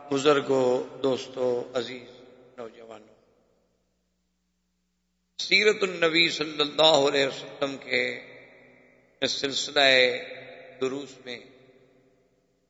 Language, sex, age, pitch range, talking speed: Urdu, male, 50-69, 130-150 Hz, 65 wpm